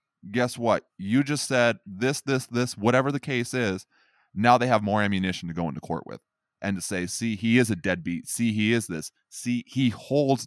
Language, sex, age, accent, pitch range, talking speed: English, male, 20-39, American, 95-120 Hz, 210 wpm